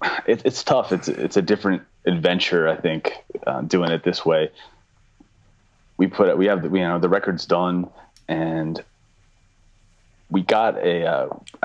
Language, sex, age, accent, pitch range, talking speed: English, male, 30-49, American, 80-100 Hz, 160 wpm